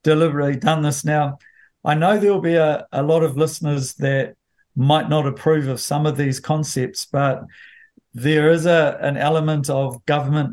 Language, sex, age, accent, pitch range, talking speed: English, male, 50-69, Australian, 140-160 Hz, 175 wpm